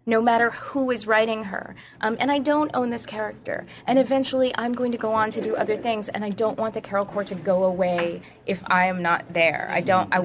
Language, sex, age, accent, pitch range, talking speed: English, female, 20-39, American, 180-225 Hz, 240 wpm